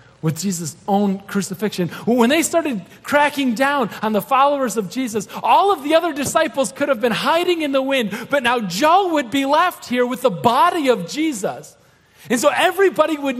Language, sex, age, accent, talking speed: English, male, 40-59, American, 190 wpm